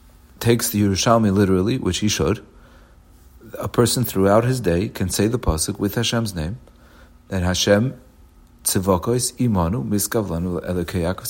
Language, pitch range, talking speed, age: English, 90-120 Hz, 125 wpm, 50-69